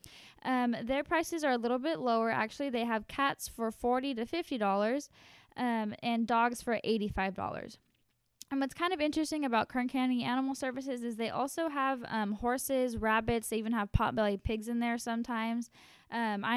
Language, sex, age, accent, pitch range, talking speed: English, female, 10-29, American, 210-255 Hz, 175 wpm